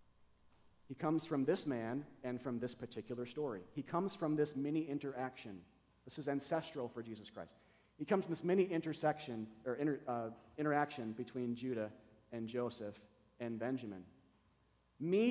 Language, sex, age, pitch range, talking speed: English, male, 40-59, 115-155 Hz, 140 wpm